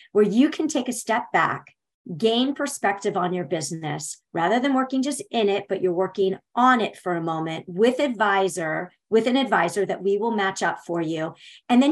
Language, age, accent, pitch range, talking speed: English, 40-59, American, 190-250 Hz, 200 wpm